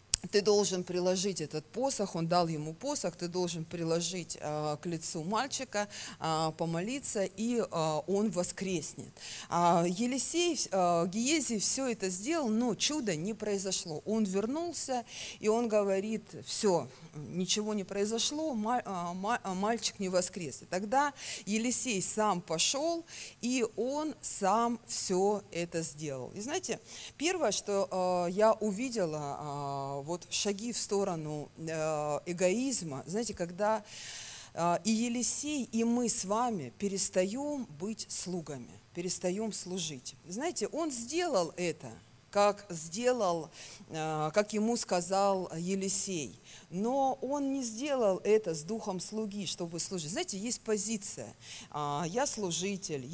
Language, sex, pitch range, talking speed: Russian, female, 170-230 Hz, 110 wpm